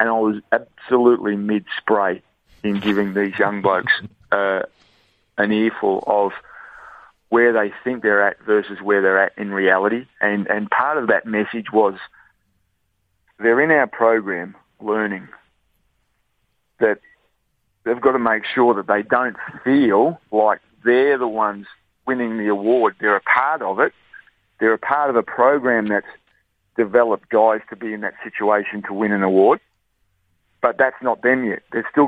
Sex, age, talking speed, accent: male, 40-59, 155 wpm, Australian